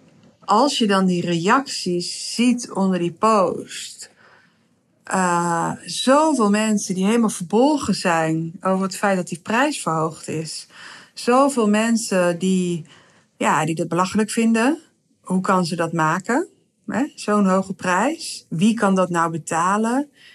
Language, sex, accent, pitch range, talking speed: Dutch, female, Dutch, 175-225 Hz, 135 wpm